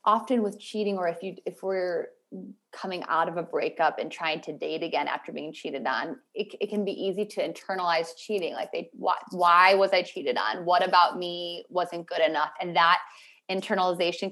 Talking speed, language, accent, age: 195 wpm, English, American, 20-39